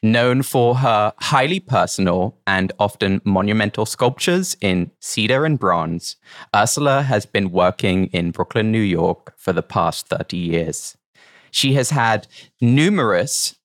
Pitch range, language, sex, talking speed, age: 95-120 Hz, English, male, 130 wpm, 30-49